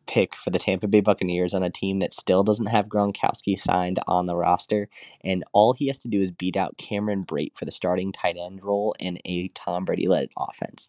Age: 20-39